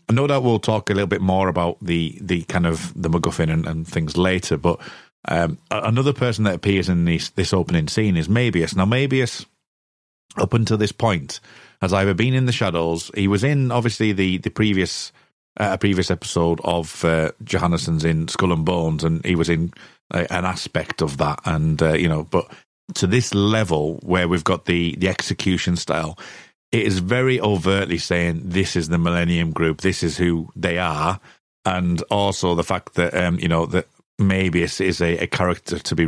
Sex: male